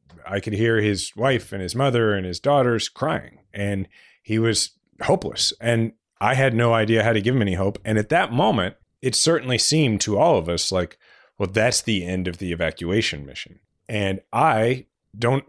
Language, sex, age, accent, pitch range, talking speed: English, male, 30-49, American, 100-130 Hz, 195 wpm